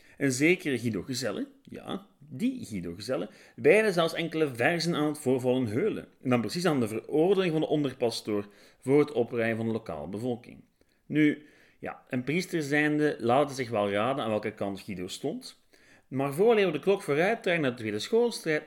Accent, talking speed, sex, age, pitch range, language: Dutch, 185 wpm, male, 40-59, 105-150 Hz, Dutch